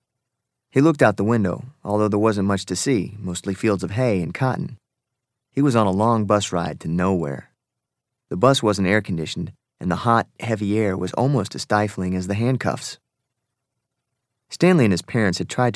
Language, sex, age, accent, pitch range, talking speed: English, male, 30-49, American, 95-125 Hz, 185 wpm